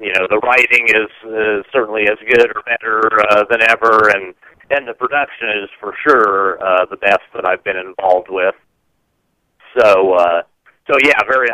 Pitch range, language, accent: 105-145 Hz, English, American